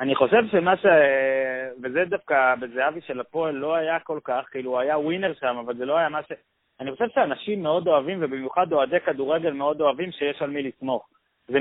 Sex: male